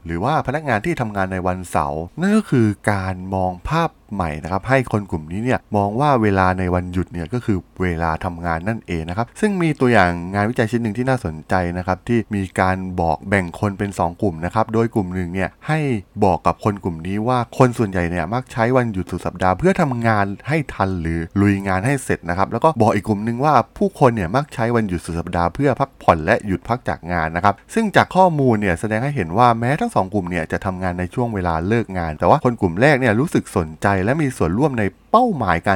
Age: 20-39